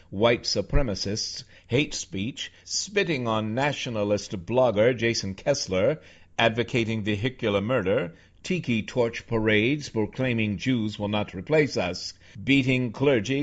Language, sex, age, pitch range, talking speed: English, male, 60-79, 100-130 Hz, 105 wpm